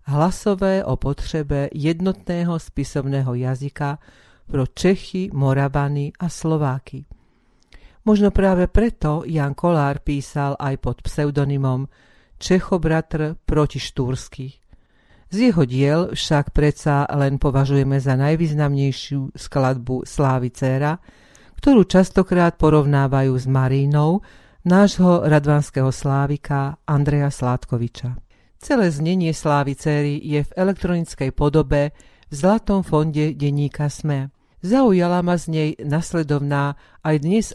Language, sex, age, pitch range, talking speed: Slovak, female, 50-69, 140-165 Hz, 105 wpm